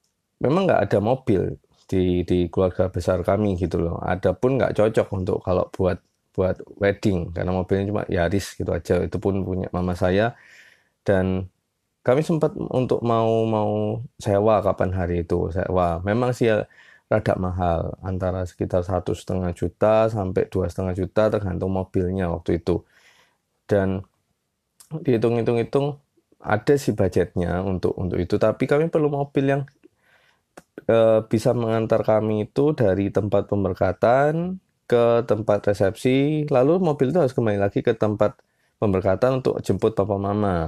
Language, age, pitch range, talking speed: Indonesian, 20-39, 95-115 Hz, 140 wpm